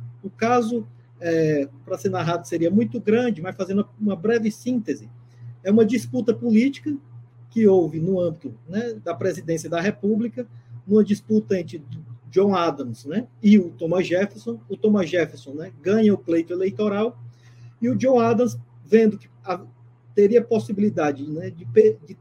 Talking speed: 155 wpm